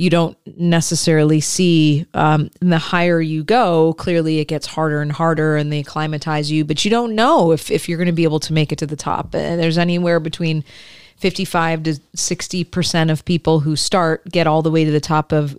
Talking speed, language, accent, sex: 210 wpm, English, American, female